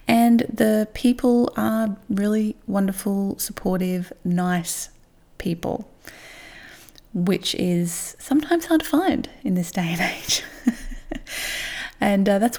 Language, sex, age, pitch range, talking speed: English, female, 20-39, 180-240 Hz, 110 wpm